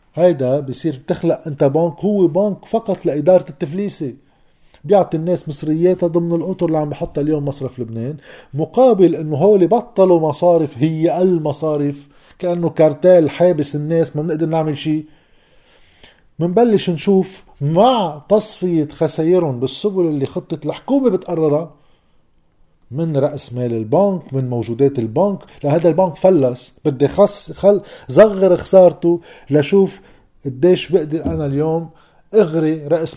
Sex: male